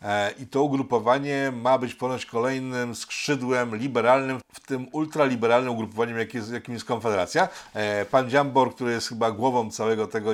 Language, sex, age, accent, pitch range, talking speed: Polish, male, 50-69, native, 105-120 Hz, 140 wpm